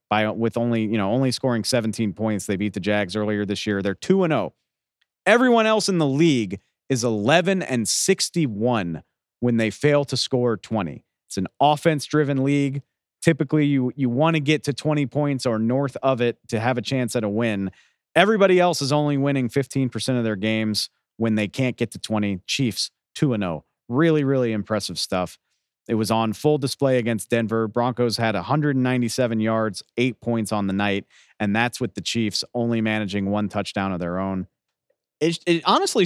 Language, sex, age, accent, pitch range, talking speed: English, male, 40-59, American, 110-140 Hz, 190 wpm